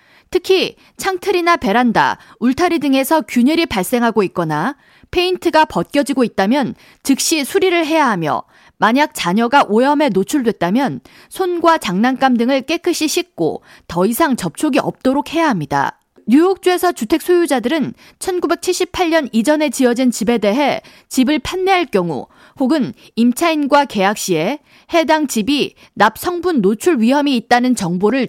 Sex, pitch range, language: female, 230-315 Hz, Korean